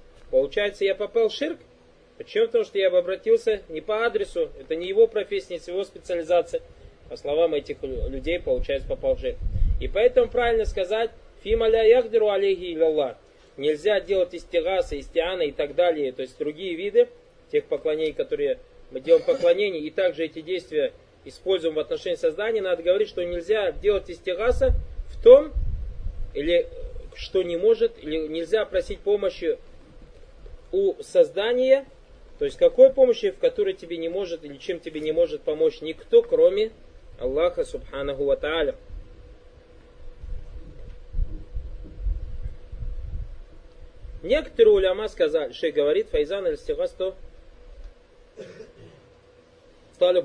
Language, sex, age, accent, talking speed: Russian, male, 20-39, native, 130 wpm